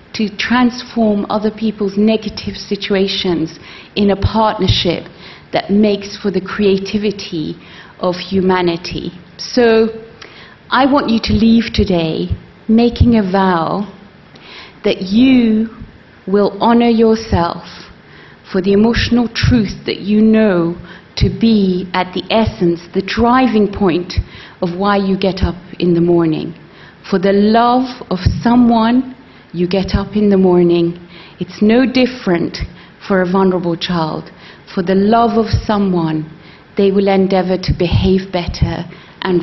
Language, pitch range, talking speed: English, 175-215 Hz, 130 wpm